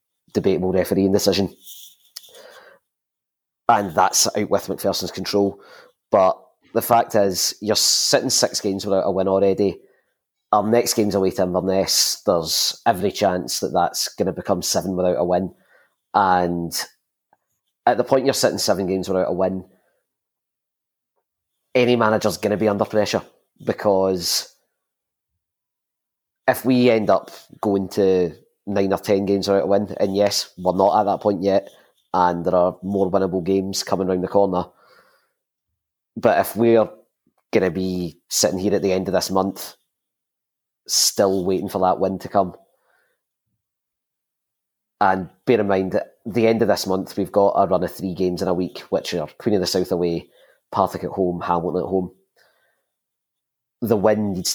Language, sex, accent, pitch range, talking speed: English, male, British, 90-100 Hz, 160 wpm